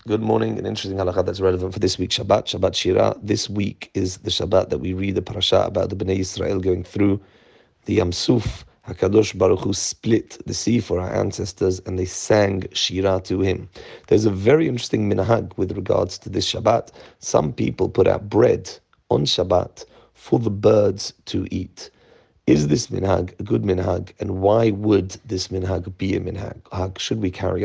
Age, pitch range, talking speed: 40-59, 95-115 Hz, 185 wpm